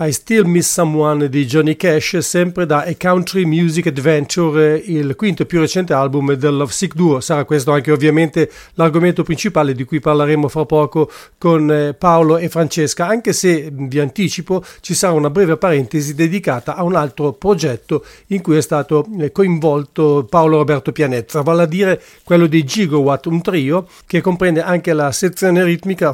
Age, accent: 40-59, Italian